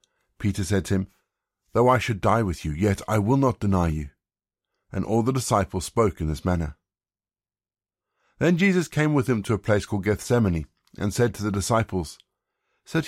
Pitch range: 95-115 Hz